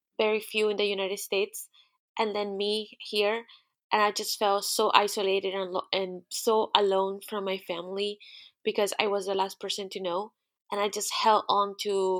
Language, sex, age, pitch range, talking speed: English, female, 20-39, 195-220 Hz, 185 wpm